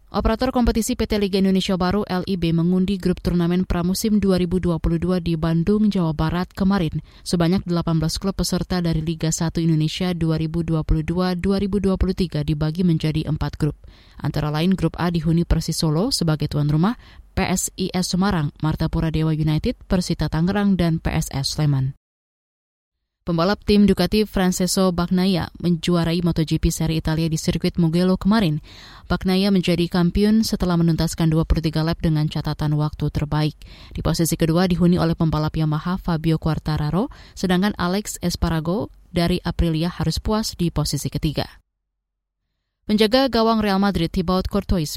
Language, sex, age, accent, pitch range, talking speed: Indonesian, female, 20-39, native, 160-185 Hz, 135 wpm